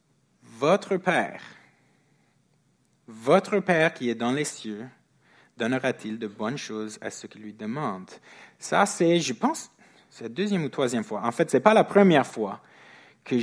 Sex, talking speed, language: male, 160 wpm, French